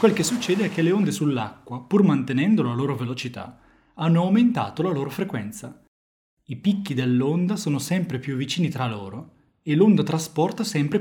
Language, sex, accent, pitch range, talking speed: Italian, male, native, 130-175 Hz, 170 wpm